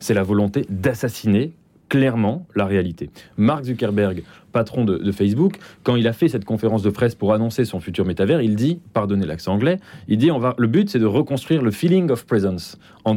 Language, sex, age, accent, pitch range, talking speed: French, male, 30-49, French, 100-130 Hz, 205 wpm